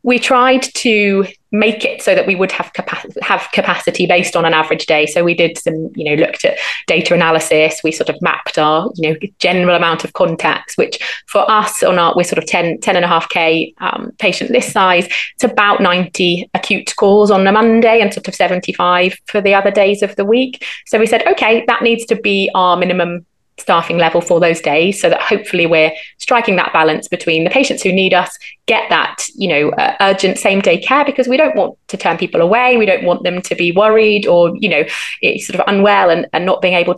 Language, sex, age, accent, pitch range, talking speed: English, female, 30-49, British, 175-220 Hz, 225 wpm